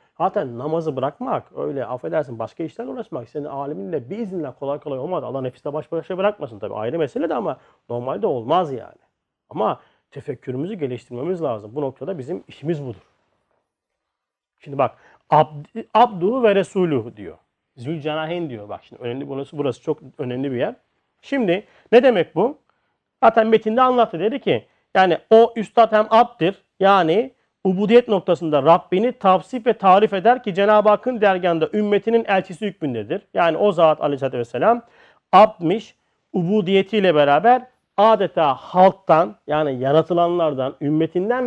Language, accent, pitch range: Turkish, native, 150-220 Hz